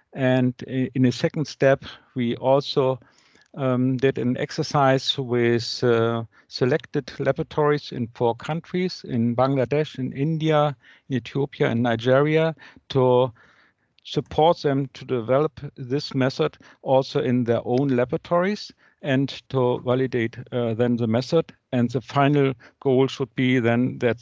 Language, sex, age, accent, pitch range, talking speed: English, male, 60-79, German, 120-140 Hz, 130 wpm